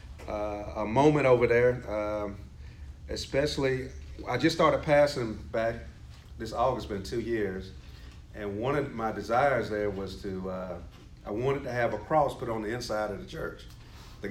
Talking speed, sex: 170 wpm, male